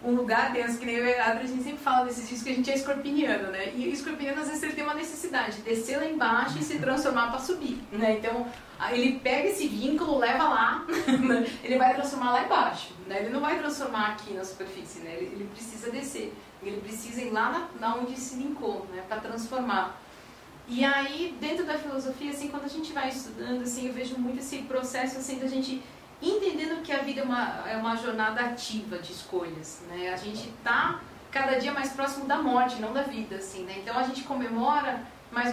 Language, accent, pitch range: Portuguese, Brazilian, 230-280 Hz